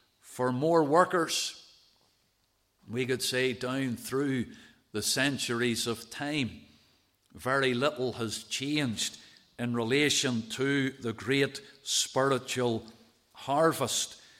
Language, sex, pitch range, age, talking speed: English, male, 120-150 Hz, 50-69, 95 wpm